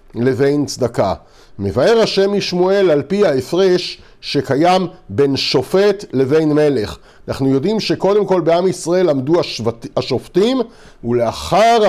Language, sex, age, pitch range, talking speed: Hebrew, male, 50-69, 150-200 Hz, 115 wpm